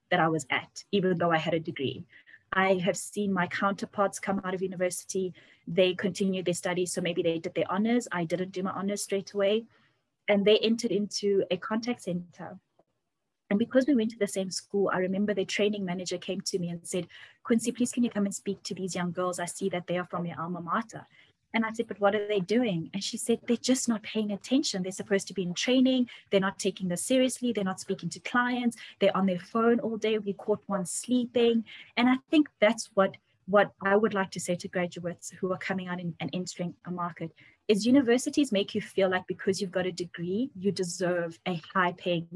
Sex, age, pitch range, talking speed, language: female, 20-39, 180-215 Hz, 225 wpm, English